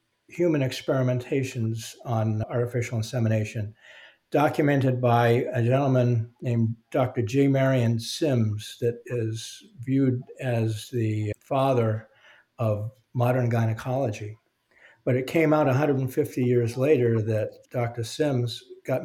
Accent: American